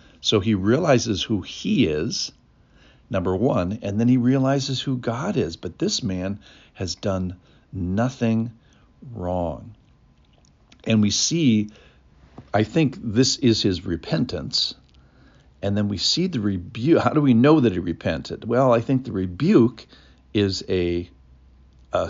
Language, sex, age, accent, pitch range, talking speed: English, male, 60-79, American, 85-120 Hz, 140 wpm